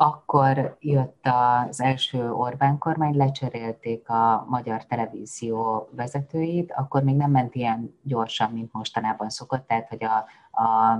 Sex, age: female, 30-49